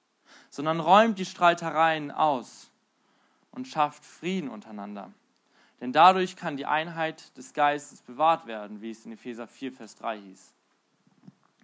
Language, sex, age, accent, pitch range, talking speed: German, male, 20-39, German, 125-165 Hz, 135 wpm